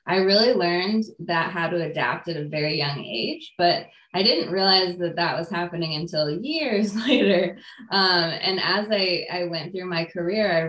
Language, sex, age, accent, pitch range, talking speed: English, female, 20-39, American, 165-190 Hz, 185 wpm